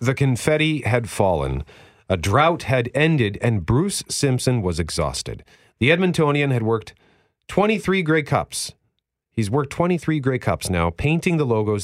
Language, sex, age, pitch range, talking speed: English, male, 40-59, 90-135 Hz, 145 wpm